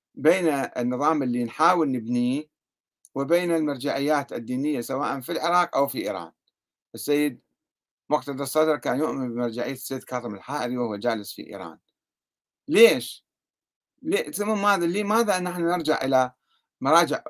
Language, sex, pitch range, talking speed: Arabic, male, 135-195 Hz, 125 wpm